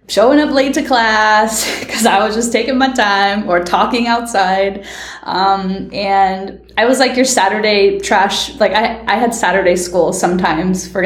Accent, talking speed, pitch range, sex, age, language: American, 170 wpm, 200-250 Hz, female, 10-29, English